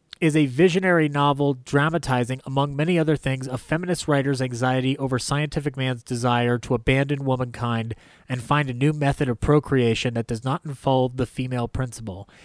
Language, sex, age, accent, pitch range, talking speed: English, male, 30-49, American, 125-155 Hz, 165 wpm